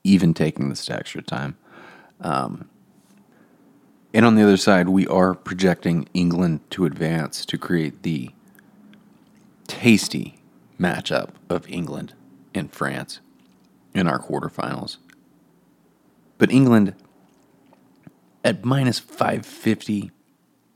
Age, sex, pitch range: 30-49, male, 85-105 Hz